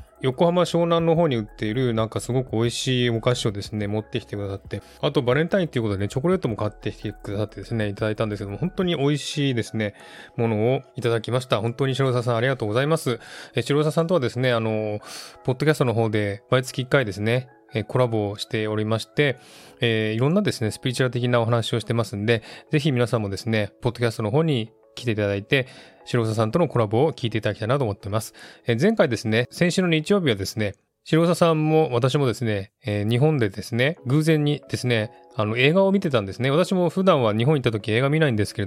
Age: 20-39